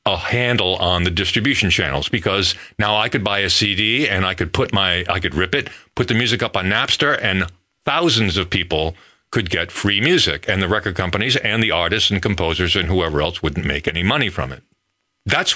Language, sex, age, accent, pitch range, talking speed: English, male, 50-69, American, 95-140 Hz, 210 wpm